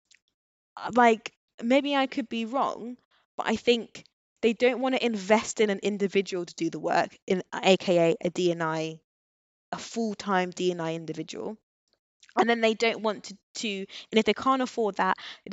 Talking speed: 165 wpm